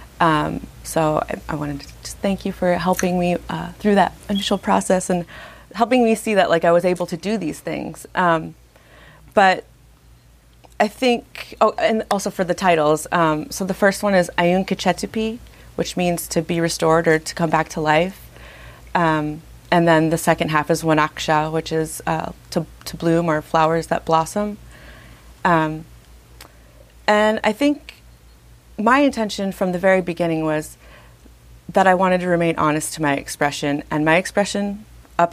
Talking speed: 170 wpm